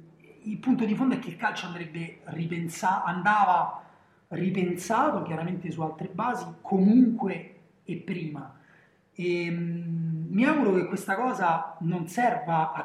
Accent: native